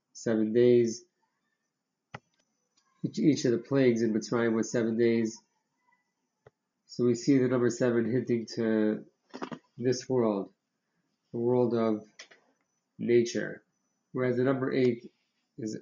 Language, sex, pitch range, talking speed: English, male, 110-125 Hz, 115 wpm